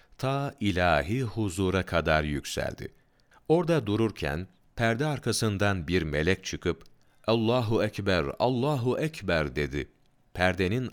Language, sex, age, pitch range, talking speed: Turkish, male, 40-59, 85-115 Hz, 100 wpm